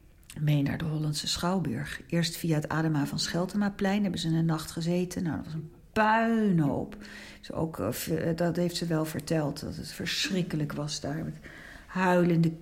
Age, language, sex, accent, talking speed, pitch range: 50-69, Dutch, female, Dutch, 165 wpm, 150-185 Hz